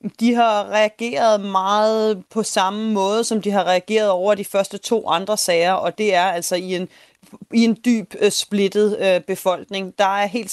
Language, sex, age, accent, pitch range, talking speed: Danish, female, 30-49, native, 185-215 Hz, 180 wpm